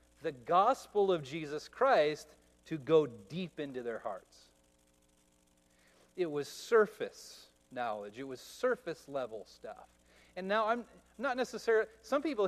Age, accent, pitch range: 40-59, American, 150-220 Hz